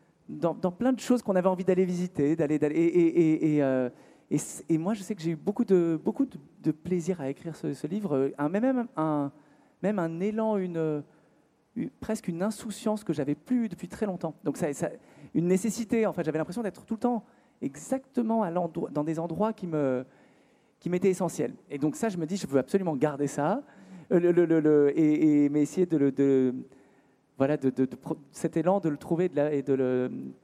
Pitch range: 150-195 Hz